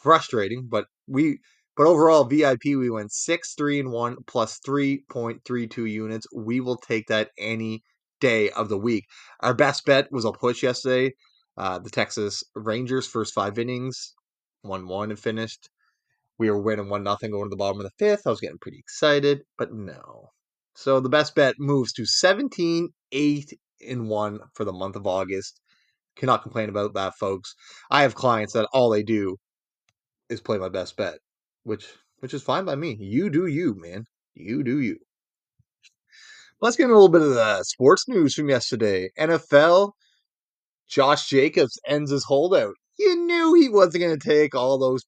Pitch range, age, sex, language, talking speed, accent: 110-150 Hz, 30-49, male, English, 180 wpm, American